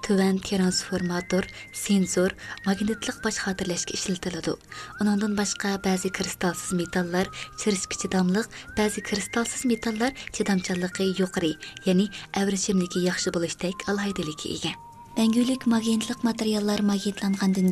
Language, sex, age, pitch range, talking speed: English, female, 20-39, 185-220 Hz, 95 wpm